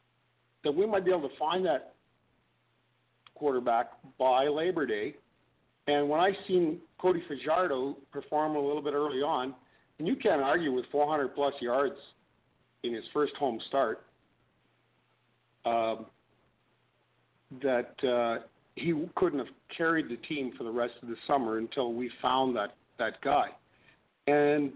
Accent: American